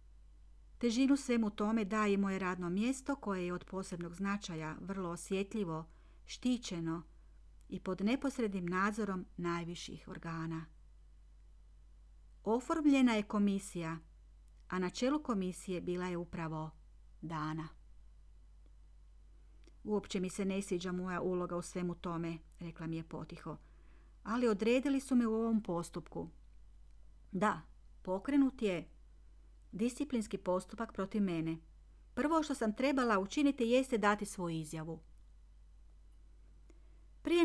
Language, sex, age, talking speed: Croatian, female, 40-59, 110 wpm